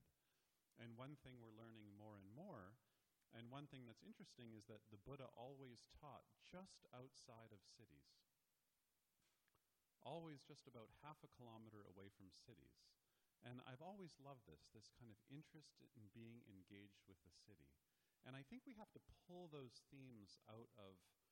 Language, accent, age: English, American, 40-59